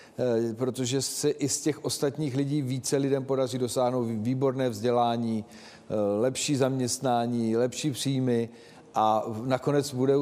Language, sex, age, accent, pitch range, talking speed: Czech, male, 40-59, native, 125-150 Hz, 115 wpm